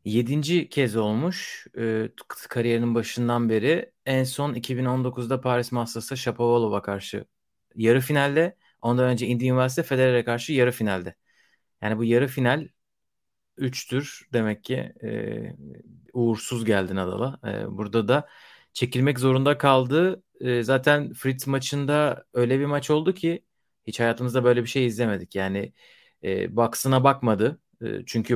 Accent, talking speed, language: native, 130 wpm, Turkish